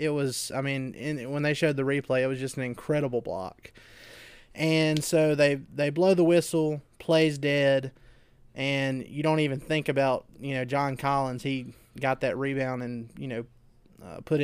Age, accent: 20-39, American